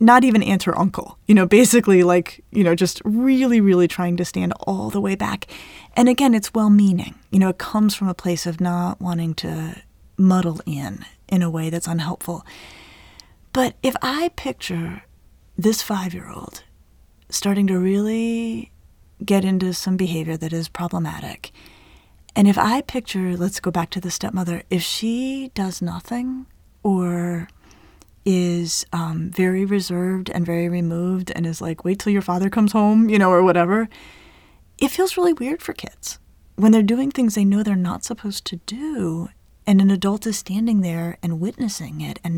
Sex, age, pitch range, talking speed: female, 30-49, 170-210 Hz, 170 wpm